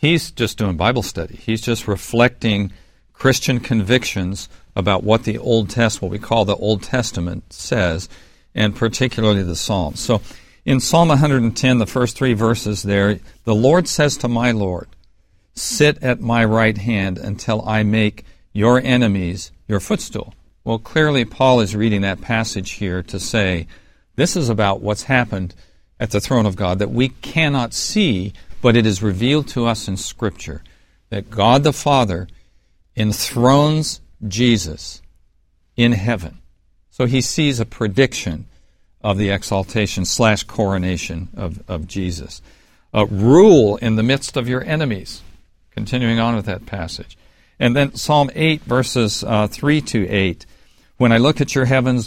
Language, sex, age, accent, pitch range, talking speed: English, male, 50-69, American, 95-125 Hz, 155 wpm